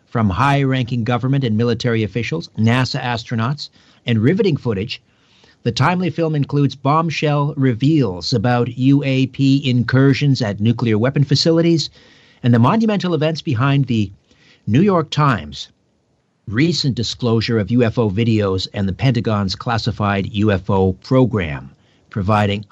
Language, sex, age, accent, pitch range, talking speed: English, male, 50-69, American, 110-140 Hz, 120 wpm